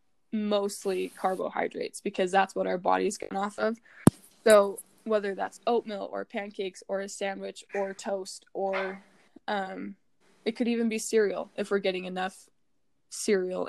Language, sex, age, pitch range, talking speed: English, female, 10-29, 185-220 Hz, 145 wpm